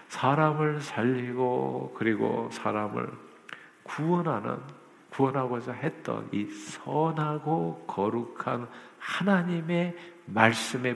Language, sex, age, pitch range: Korean, male, 50-69, 110-155 Hz